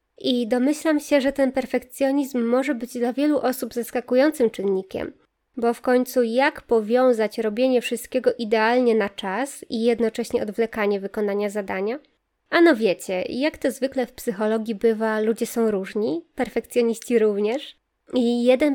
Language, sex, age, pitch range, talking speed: Polish, female, 20-39, 225-270 Hz, 140 wpm